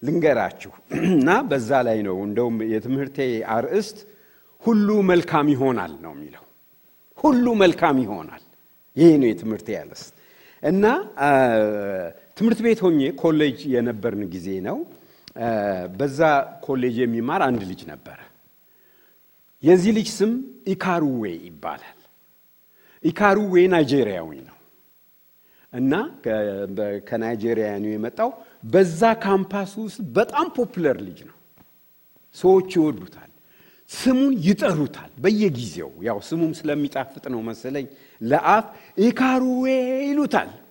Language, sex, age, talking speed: English, male, 60-79, 45 wpm